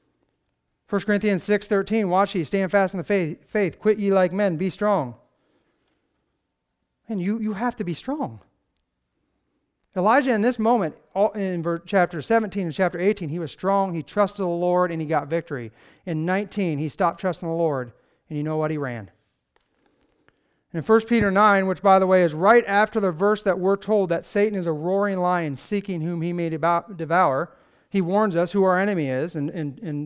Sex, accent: male, American